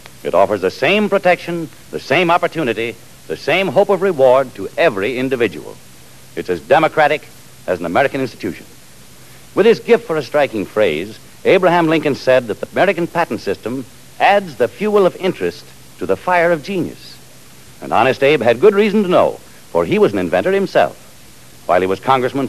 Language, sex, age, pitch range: English, male, 70-89, 120-175 Hz